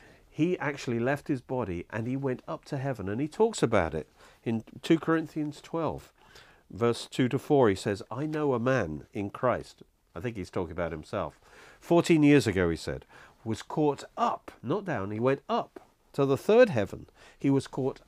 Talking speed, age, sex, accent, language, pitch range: 195 wpm, 50-69, male, British, English, 105-150 Hz